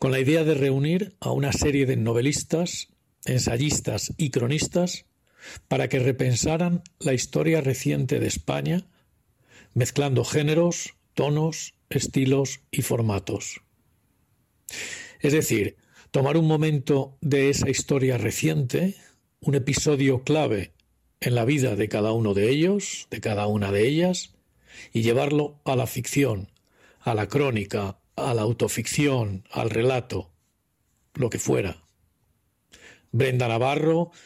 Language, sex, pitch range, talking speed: Spanish, male, 120-155 Hz, 125 wpm